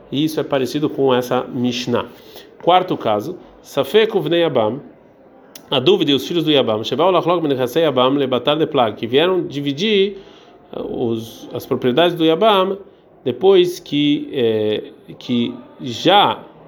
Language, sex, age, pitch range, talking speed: Portuguese, male, 40-59, 120-170 Hz, 95 wpm